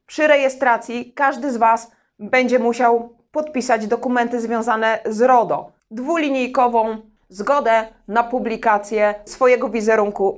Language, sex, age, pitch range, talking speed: Polish, female, 30-49, 215-255 Hz, 105 wpm